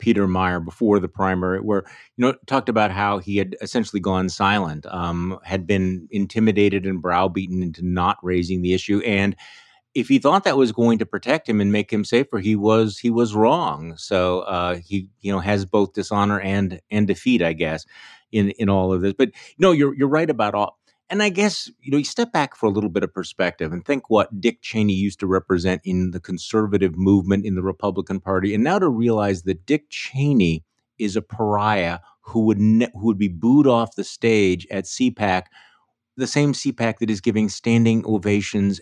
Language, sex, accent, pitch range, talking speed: English, male, American, 95-115 Hz, 205 wpm